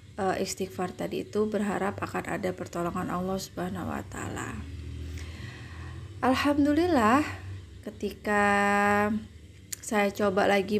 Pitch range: 135-215 Hz